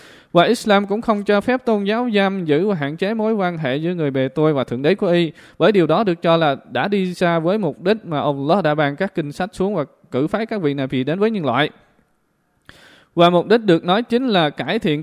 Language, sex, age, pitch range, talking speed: Vietnamese, male, 20-39, 150-200 Hz, 260 wpm